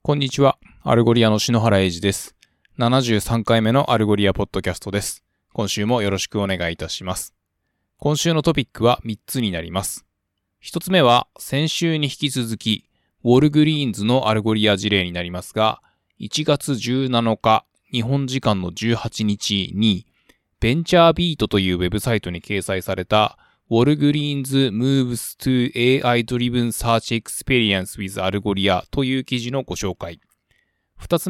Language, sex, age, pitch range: Japanese, male, 20-39, 100-135 Hz